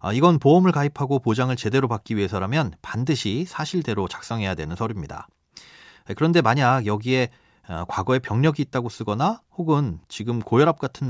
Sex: male